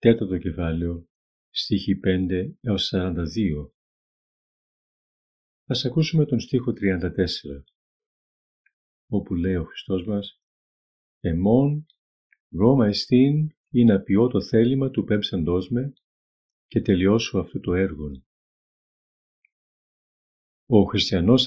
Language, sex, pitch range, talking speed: Greek, male, 85-115 Hz, 90 wpm